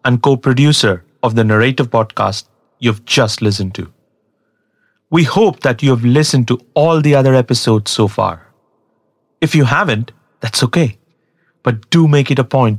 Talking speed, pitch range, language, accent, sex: 160 wpm, 110-155 Hz, English, Indian, male